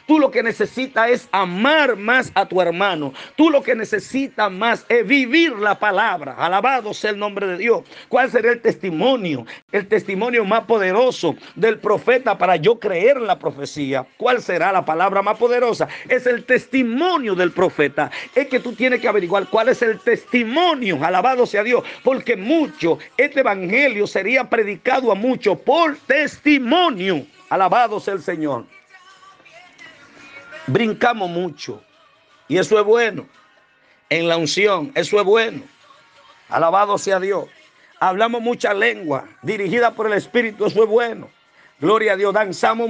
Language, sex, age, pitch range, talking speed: Spanish, male, 50-69, 200-265 Hz, 150 wpm